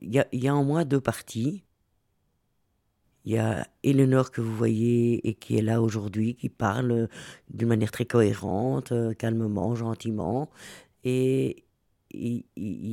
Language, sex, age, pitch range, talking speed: French, female, 50-69, 115-145 Hz, 140 wpm